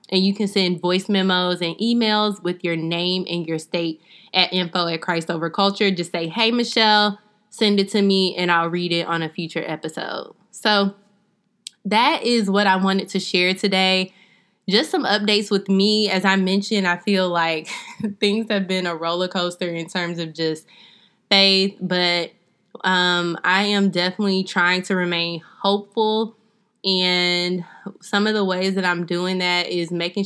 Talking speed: 175 wpm